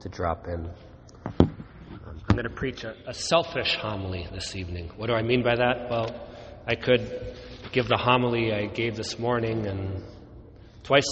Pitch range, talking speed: 100-125 Hz, 165 wpm